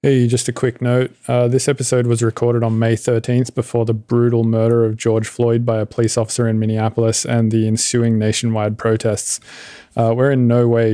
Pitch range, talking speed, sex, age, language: 110-120 Hz, 195 wpm, male, 20-39, English